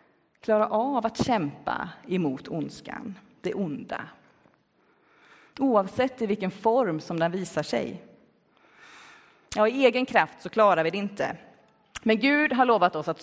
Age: 30-49